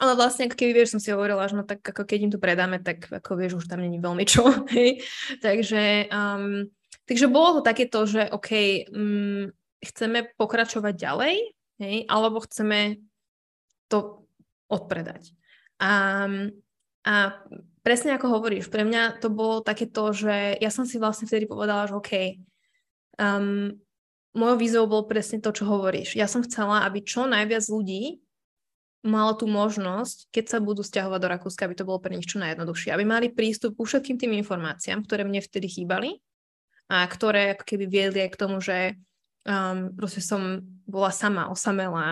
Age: 20-39